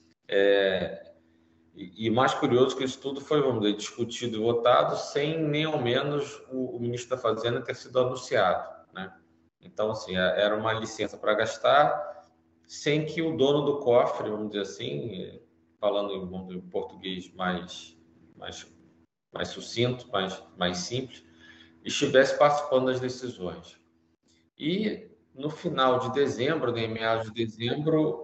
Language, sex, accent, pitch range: Portuguese, male, Brazilian, 90-130 Hz